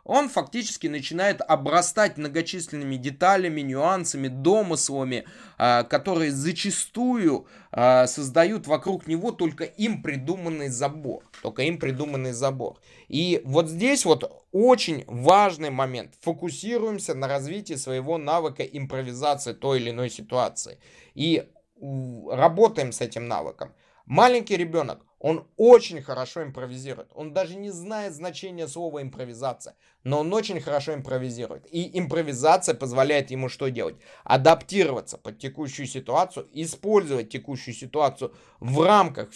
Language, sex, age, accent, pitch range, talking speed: Russian, male, 20-39, native, 135-180 Hz, 115 wpm